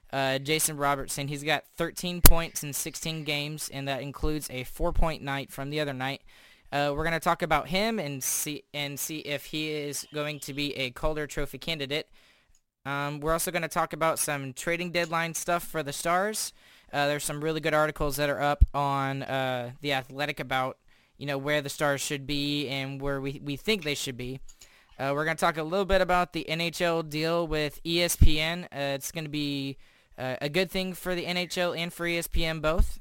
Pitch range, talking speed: 140-165 Hz, 200 wpm